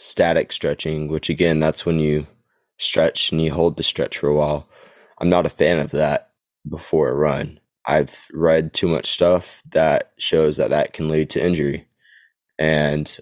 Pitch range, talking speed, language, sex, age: 75-85 Hz, 175 wpm, English, male, 20-39